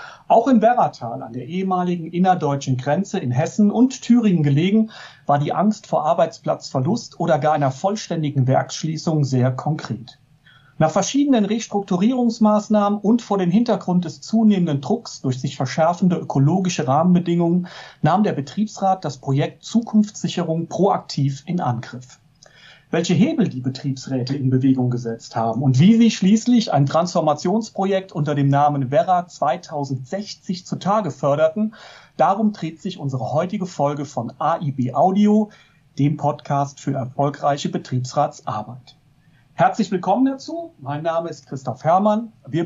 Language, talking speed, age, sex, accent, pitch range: German, 130 wpm, 40-59, male, German, 140-195 Hz